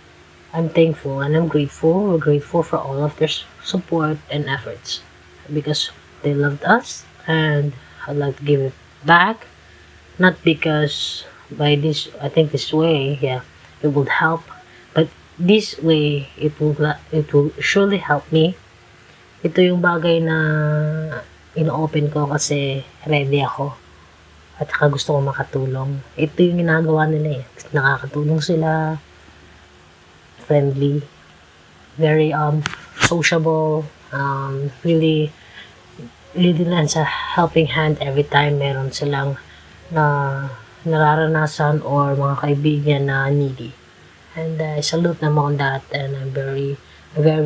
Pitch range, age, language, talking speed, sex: 135-160 Hz, 20-39, Filipino, 125 wpm, female